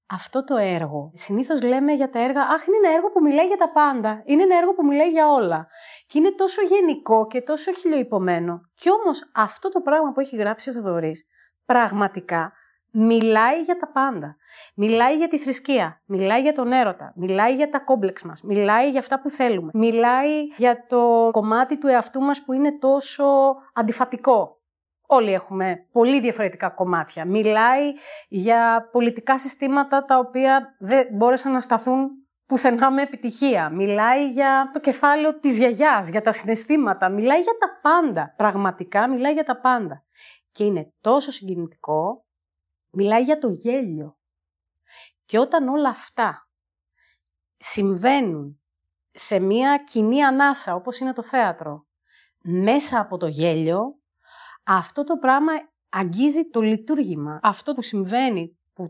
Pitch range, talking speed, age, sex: 195-275 Hz, 150 wpm, 30-49, female